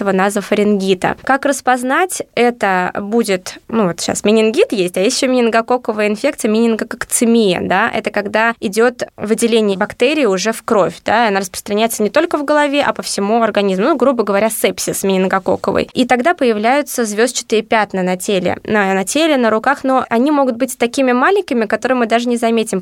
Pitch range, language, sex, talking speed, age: 200-250 Hz, Russian, female, 175 wpm, 20-39